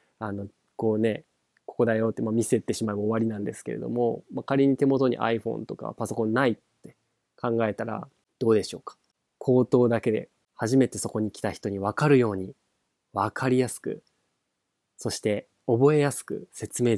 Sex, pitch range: male, 110-140 Hz